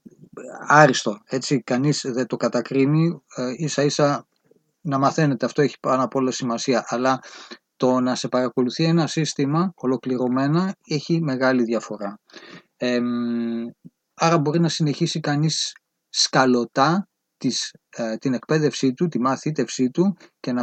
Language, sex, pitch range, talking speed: Greek, male, 120-155 Hz, 135 wpm